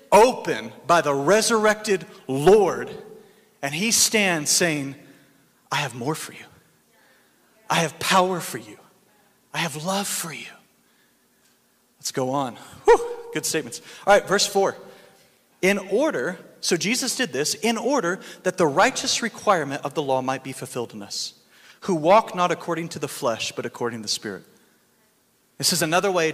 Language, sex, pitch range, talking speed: English, male, 140-205 Hz, 155 wpm